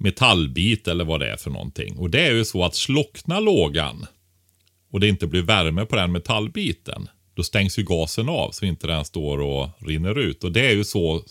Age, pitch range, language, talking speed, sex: 30-49, 80-110 Hz, Swedish, 220 wpm, male